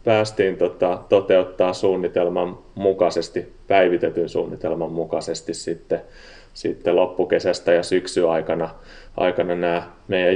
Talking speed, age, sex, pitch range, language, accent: 95 wpm, 30-49, male, 95-125 Hz, Finnish, native